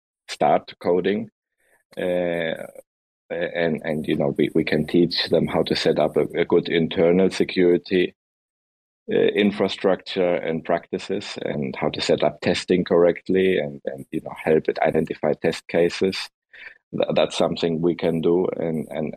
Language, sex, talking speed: English, male, 150 wpm